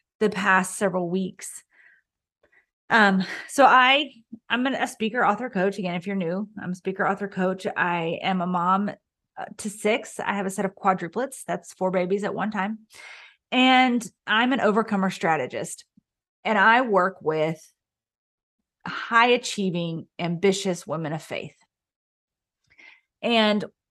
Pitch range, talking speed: 185-230 Hz, 140 wpm